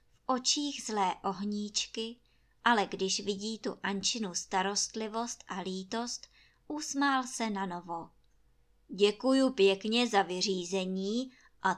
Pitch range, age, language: 190-270 Hz, 20-39, Czech